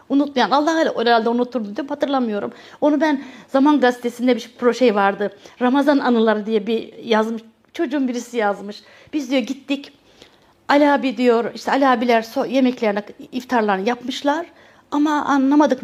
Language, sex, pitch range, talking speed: Turkish, female, 215-280 Hz, 130 wpm